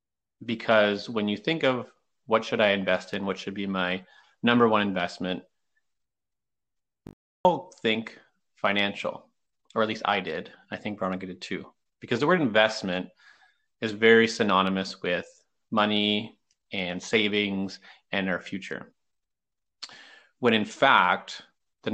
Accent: American